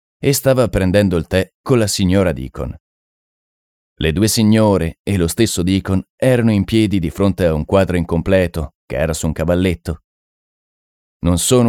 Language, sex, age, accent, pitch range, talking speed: Italian, male, 30-49, native, 80-110 Hz, 165 wpm